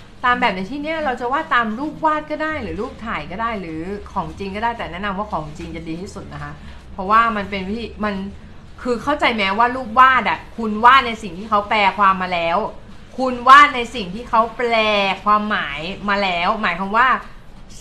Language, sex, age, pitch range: Thai, female, 30-49, 180-235 Hz